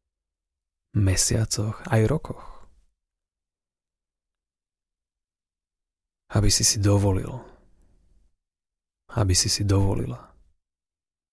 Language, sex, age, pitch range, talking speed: Slovak, male, 30-49, 75-100 Hz, 60 wpm